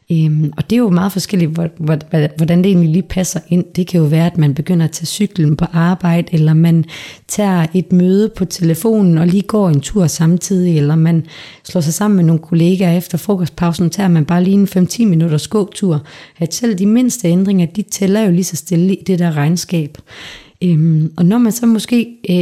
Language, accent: English, Danish